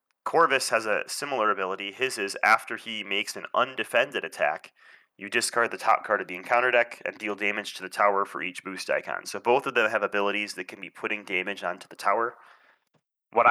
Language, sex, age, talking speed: English, male, 30-49, 210 wpm